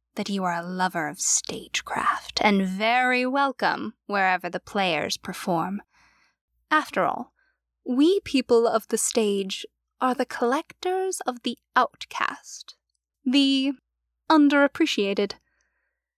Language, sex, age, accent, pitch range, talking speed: English, female, 10-29, American, 205-290 Hz, 110 wpm